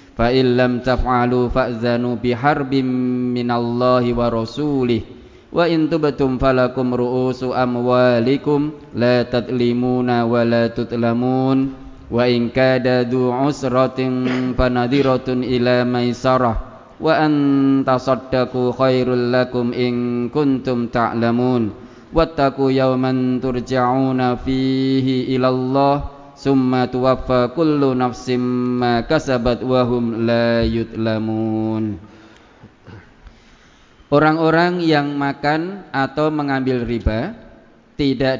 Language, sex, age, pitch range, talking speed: Indonesian, male, 20-39, 120-135 Hz, 50 wpm